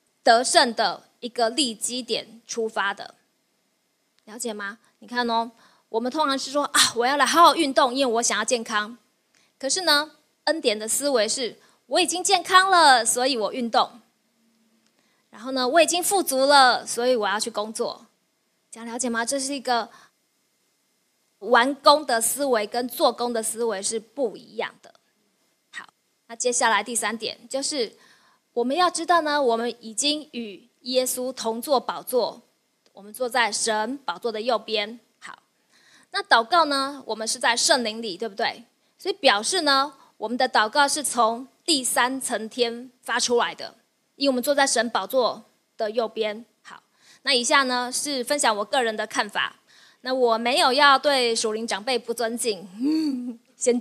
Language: Chinese